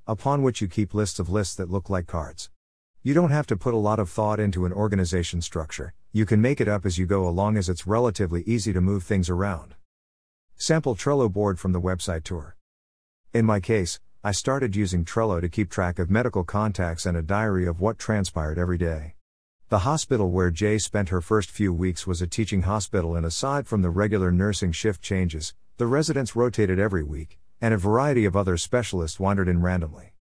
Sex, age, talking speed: male, 50-69, 205 wpm